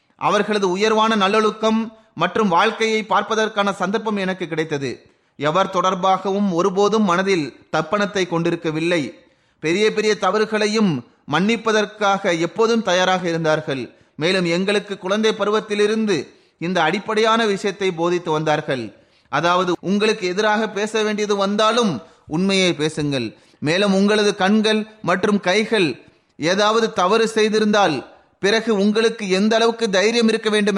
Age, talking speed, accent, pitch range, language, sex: 30-49, 105 wpm, native, 170-210 Hz, Tamil, male